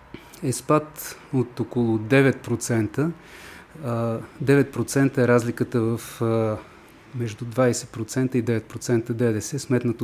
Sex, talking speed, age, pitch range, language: male, 90 wpm, 30-49, 115-135 Hz, Bulgarian